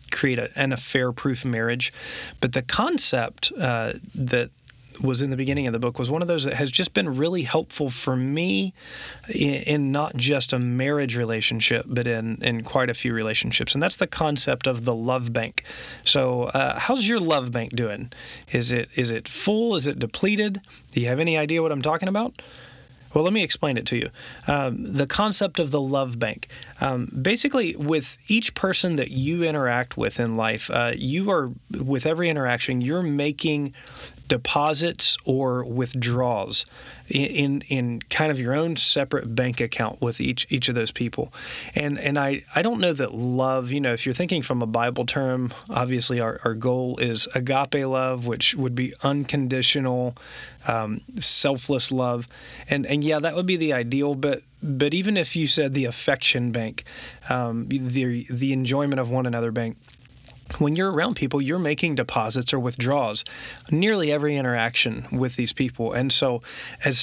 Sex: male